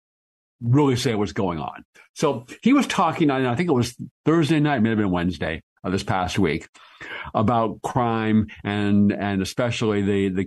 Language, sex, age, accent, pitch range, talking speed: English, male, 50-69, American, 100-120 Hz, 170 wpm